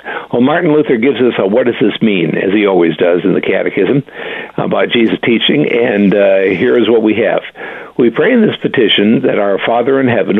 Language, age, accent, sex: English, 60-79, American, male